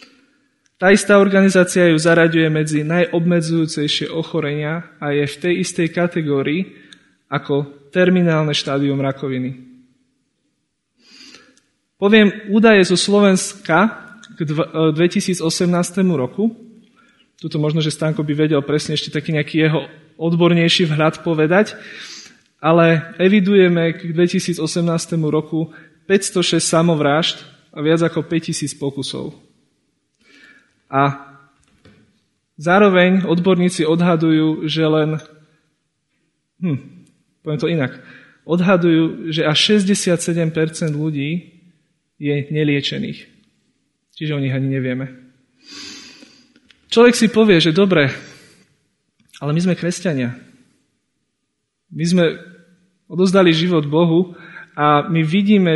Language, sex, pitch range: Slovak, male, 150-180 Hz